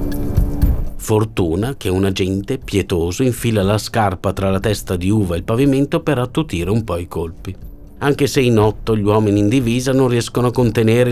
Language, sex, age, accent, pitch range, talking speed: Italian, male, 50-69, native, 90-120 Hz, 185 wpm